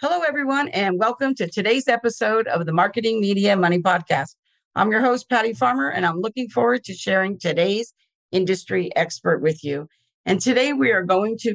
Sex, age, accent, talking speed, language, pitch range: female, 50-69, American, 180 wpm, English, 165-225 Hz